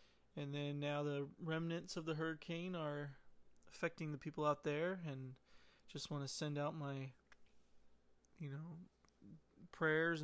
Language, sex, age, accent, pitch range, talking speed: English, male, 20-39, American, 145-170 Hz, 140 wpm